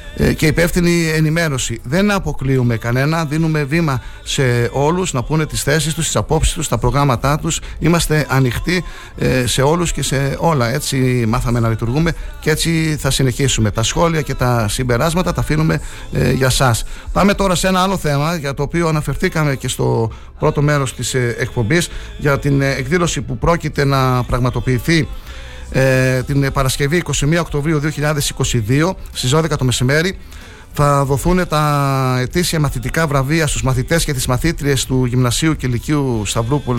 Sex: male